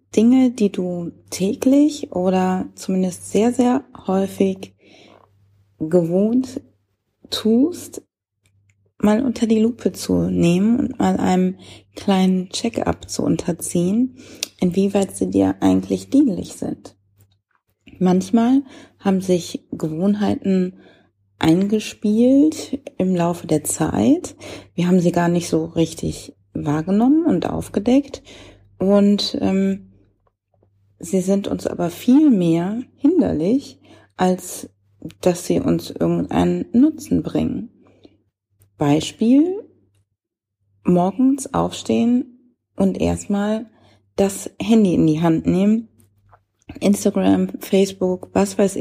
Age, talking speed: 30-49, 100 wpm